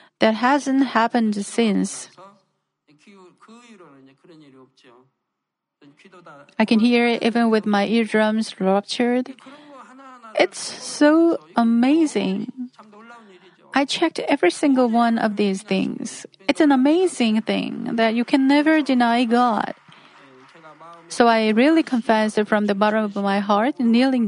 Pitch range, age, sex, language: 205-260 Hz, 40-59, female, Korean